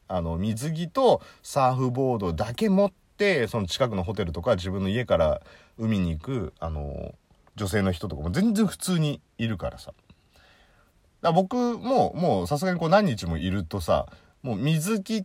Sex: male